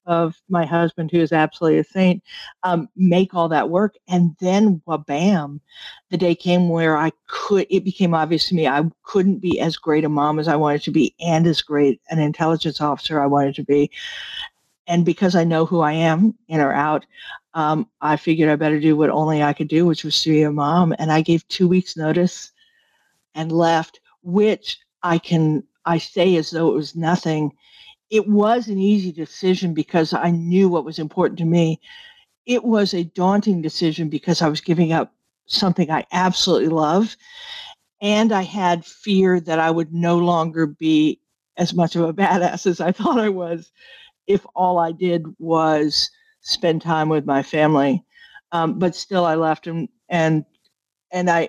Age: 50-69